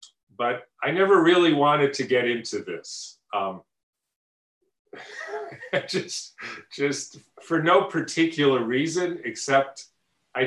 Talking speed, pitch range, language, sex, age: 105 wpm, 120-150 Hz, English, male, 40-59